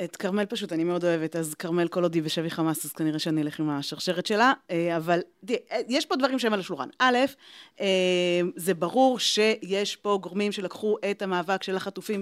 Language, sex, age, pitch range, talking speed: Hebrew, female, 30-49, 180-225 Hz, 190 wpm